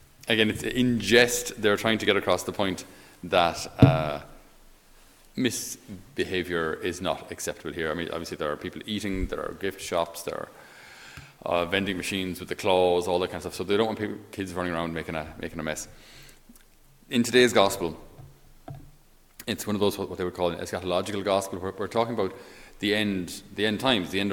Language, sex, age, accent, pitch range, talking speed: English, male, 30-49, Irish, 90-110 Hz, 195 wpm